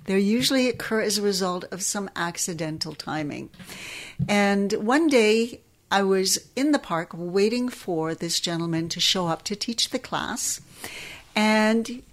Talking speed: 150 wpm